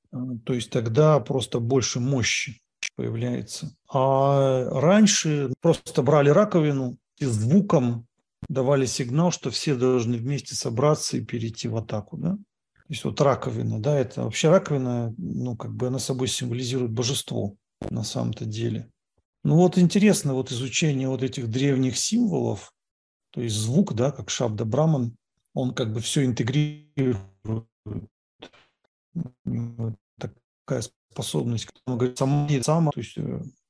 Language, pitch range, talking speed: English, 115-145 Hz, 130 wpm